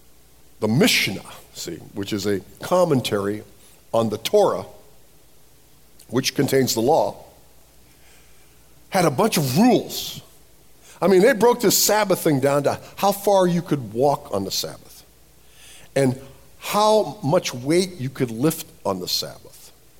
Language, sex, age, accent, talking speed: English, male, 50-69, American, 140 wpm